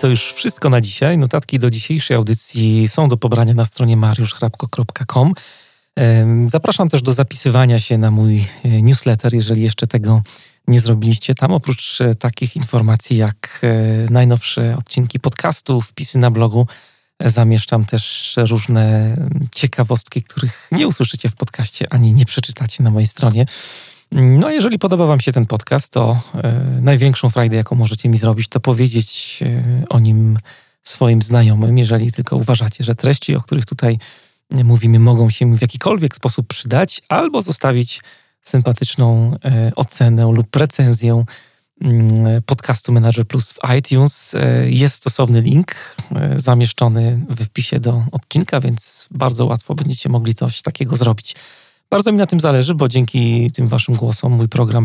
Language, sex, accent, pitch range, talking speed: Polish, male, native, 115-135 Hz, 150 wpm